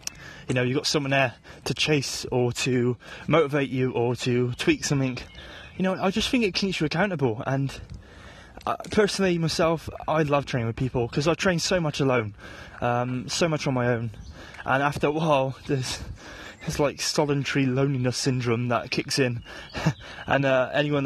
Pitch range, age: 120-155 Hz, 20-39